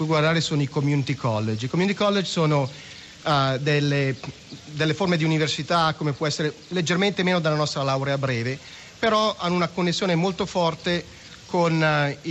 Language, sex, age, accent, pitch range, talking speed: Italian, male, 40-59, native, 140-170 Hz, 155 wpm